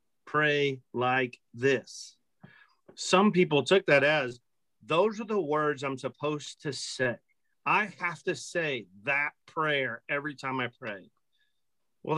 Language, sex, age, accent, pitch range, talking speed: English, male, 40-59, American, 130-175 Hz, 135 wpm